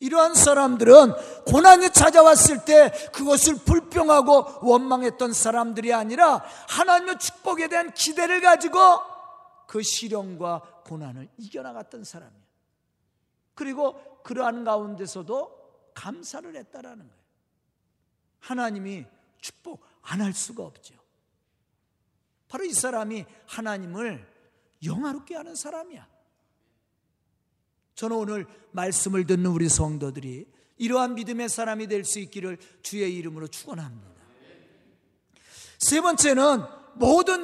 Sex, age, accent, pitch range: male, 40-59, native, 190-300 Hz